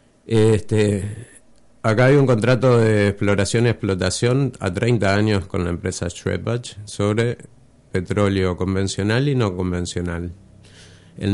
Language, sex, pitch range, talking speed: Spanish, male, 90-115 Hz, 115 wpm